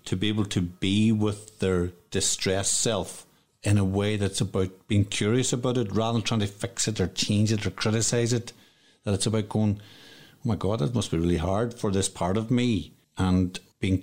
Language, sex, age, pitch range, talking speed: English, male, 50-69, 95-110 Hz, 210 wpm